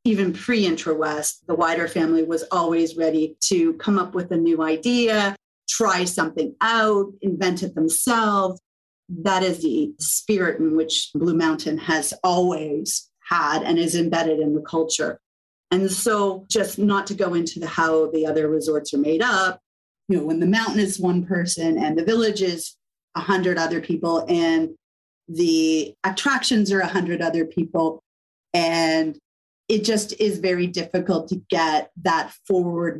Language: English